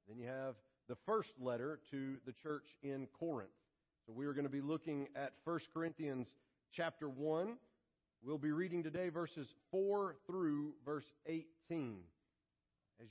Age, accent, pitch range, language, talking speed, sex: 40-59, American, 125-165 Hz, English, 150 wpm, male